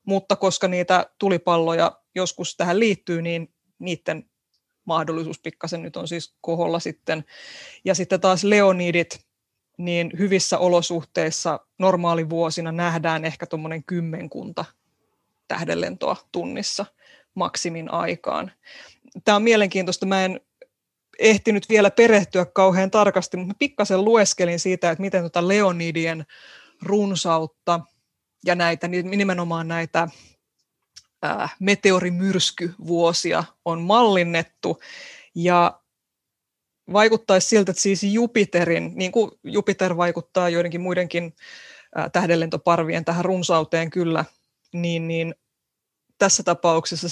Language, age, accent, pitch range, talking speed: Finnish, 20-39, native, 165-190 Hz, 105 wpm